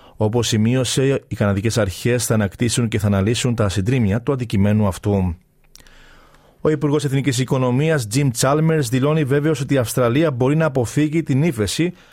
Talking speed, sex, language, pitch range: 155 wpm, male, Greek, 125-150 Hz